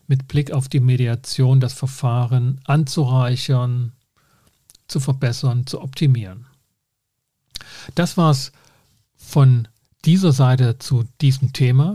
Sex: male